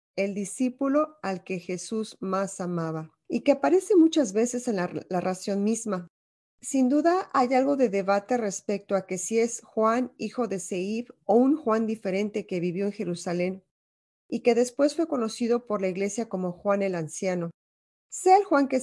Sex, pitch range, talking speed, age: female, 195-250 Hz, 180 wpm, 40-59